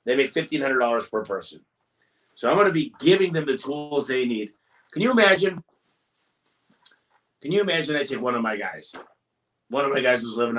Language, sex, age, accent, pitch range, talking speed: English, male, 30-49, American, 115-165 Hz, 195 wpm